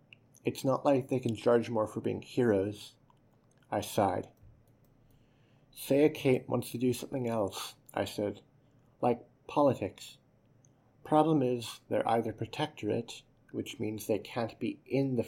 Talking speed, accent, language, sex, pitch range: 140 wpm, American, English, male, 115-135 Hz